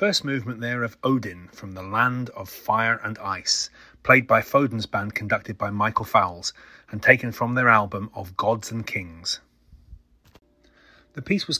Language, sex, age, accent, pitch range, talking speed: English, male, 30-49, British, 105-130 Hz, 165 wpm